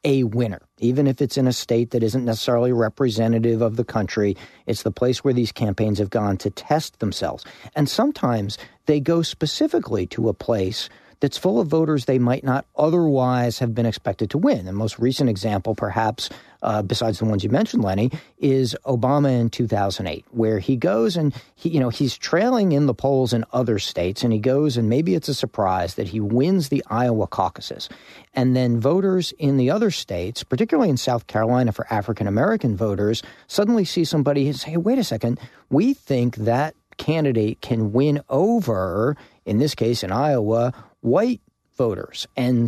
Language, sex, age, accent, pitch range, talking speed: English, male, 40-59, American, 110-145 Hz, 180 wpm